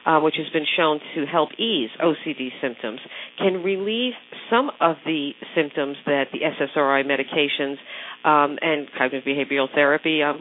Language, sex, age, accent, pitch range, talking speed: English, female, 50-69, American, 140-170 Hz, 150 wpm